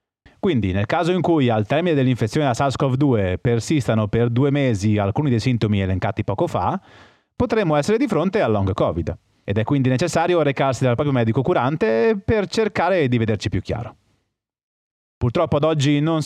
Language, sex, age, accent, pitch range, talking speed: Italian, male, 30-49, native, 110-160 Hz, 170 wpm